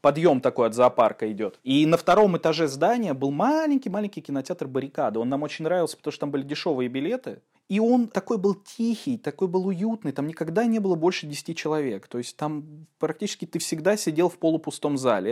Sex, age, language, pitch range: male, 20-39, Russian, 130-185 Hz